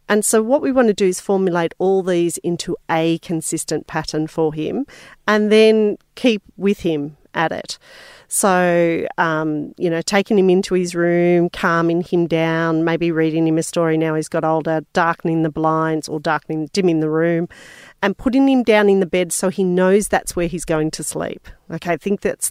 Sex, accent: female, Australian